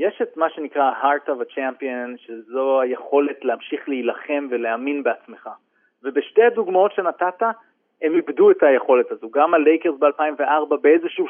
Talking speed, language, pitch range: 135 wpm, Hebrew, 140-230 Hz